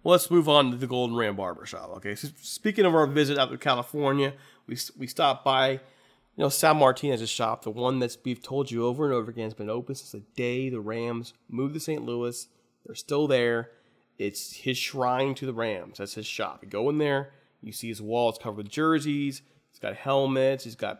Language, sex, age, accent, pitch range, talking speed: English, male, 30-49, American, 115-145 Hz, 225 wpm